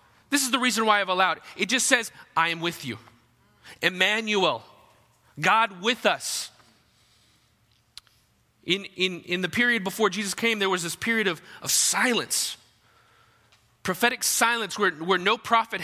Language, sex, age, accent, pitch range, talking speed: English, male, 30-49, American, 115-195 Hz, 150 wpm